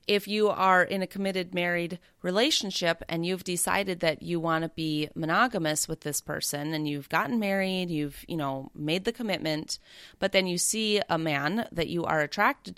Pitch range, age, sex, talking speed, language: 155-195 Hz, 30-49, female, 190 wpm, English